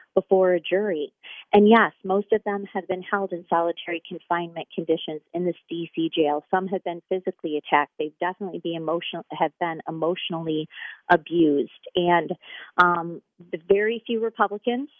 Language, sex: English, female